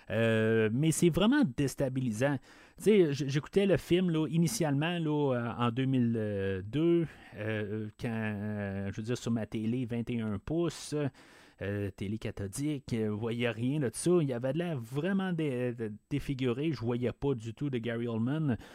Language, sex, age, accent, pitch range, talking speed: French, male, 30-49, Canadian, 115-150 Hz, 155 wpm